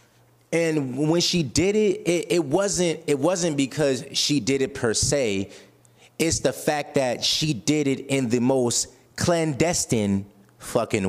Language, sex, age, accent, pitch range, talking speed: English, male, 30-49, American, 110-155 Hz, 150 wpm